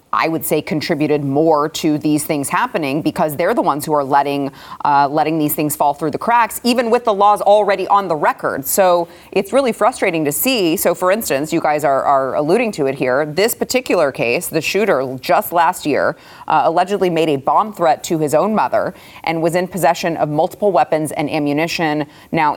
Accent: American